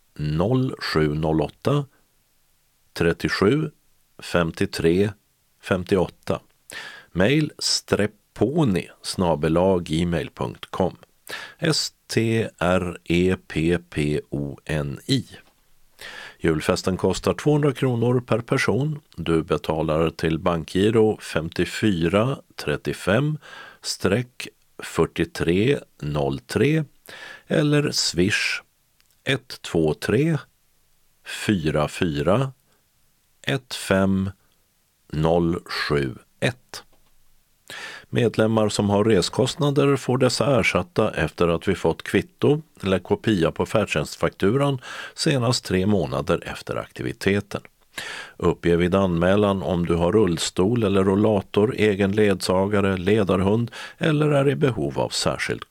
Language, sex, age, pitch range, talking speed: Swedish, male, 50-69, 85-125 Hz, 80 wpm